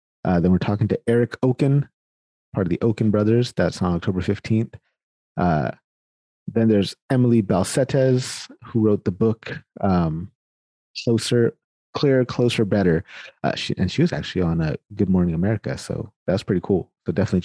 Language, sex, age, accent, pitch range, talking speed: English, male, 30-49, American, 85-110 Hz, 160 wpm